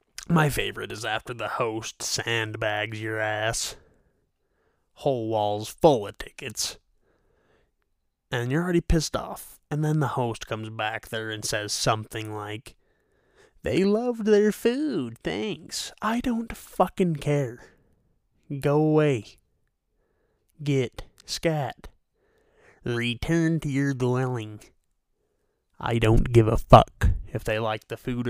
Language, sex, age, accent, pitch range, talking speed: English, male, 20-39, American, 110-150 Hz, 120 wpm